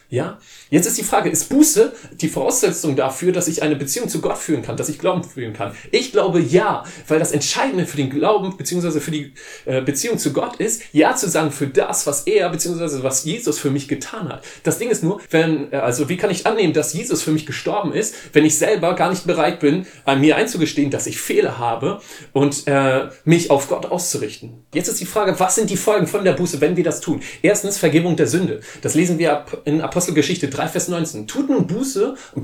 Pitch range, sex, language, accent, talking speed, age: 145-185 Hz, male, German, German, 225 wpm, 30-49